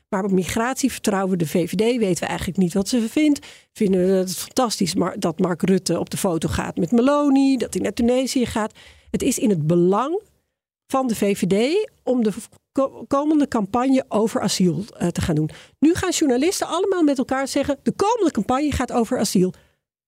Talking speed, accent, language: 190 wpm, Dutch, Dutch